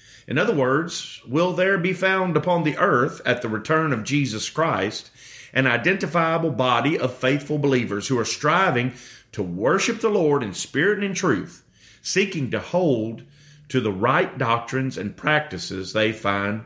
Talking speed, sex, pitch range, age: 160 wpm, male, 120-160 Hz, 40-59